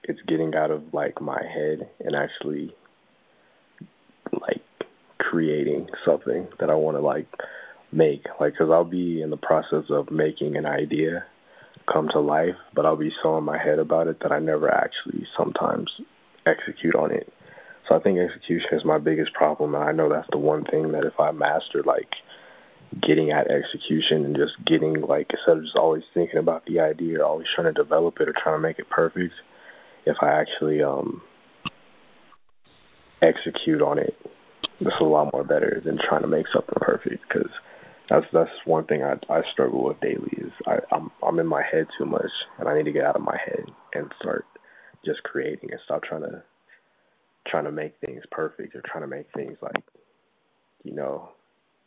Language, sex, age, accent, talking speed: English, male, 20-39, American, 190 wpm